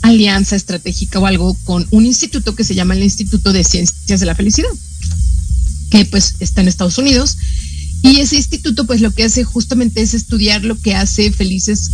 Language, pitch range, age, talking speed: Spanish, 175-220 Hz, 30-49, 185 wpm